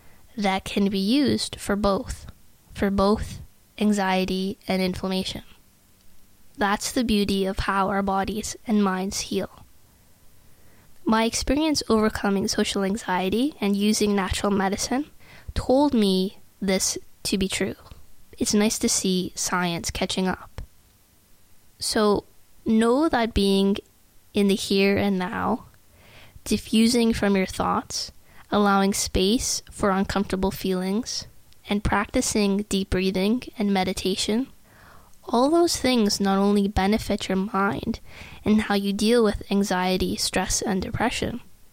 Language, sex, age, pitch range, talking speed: English, female, 20-39, 190-215 Hz, 120 wpm